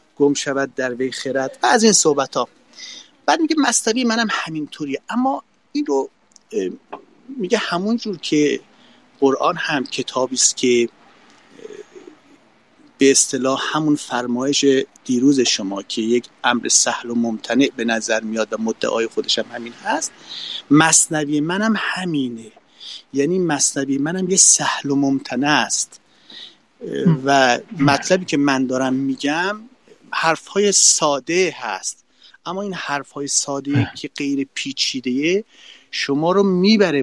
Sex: male